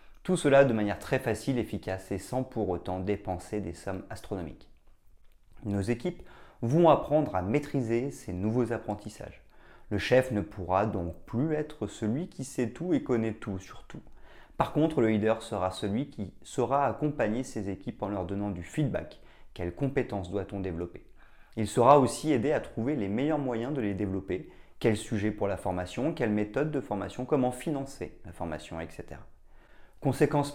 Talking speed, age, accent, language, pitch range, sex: 170 wpm, 30-49, French, French, 100-130 Hz, male